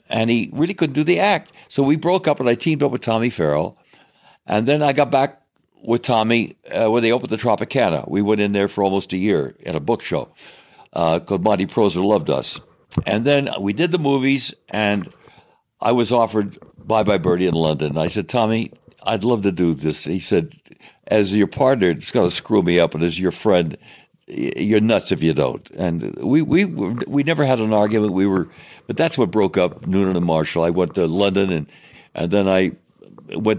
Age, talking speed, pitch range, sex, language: 60-79, 215 wpm, 90-125 Hz, male, English